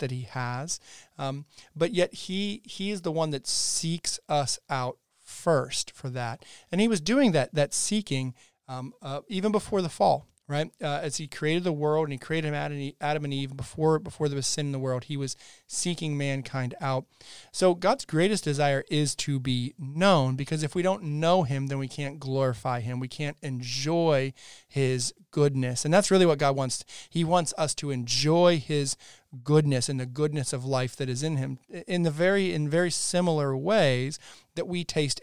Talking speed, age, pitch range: 195 wpm, 40-59, 130-155 Hz